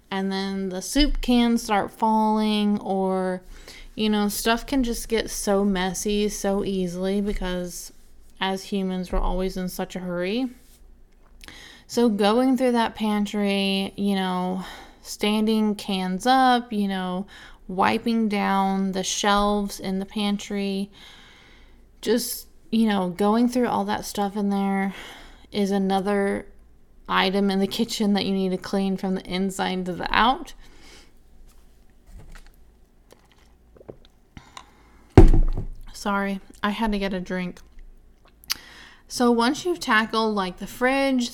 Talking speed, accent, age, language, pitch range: 125 wpm, American, 20-39, English, 190-220 Hz